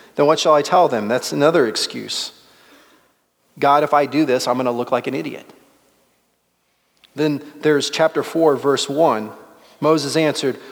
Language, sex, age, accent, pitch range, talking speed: English, male, 40-59, American, 130-155 Hz, 155 wpm